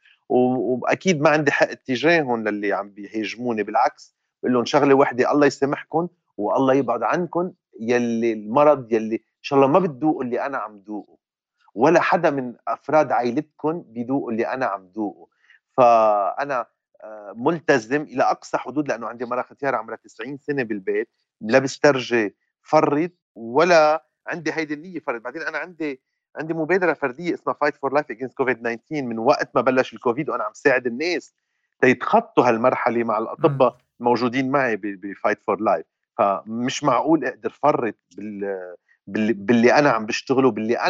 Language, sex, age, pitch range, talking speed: Arabic, male, 40-59, 115-150 Hz, 150 wpm